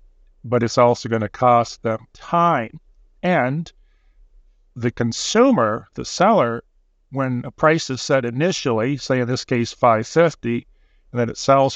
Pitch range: 110-135 Hz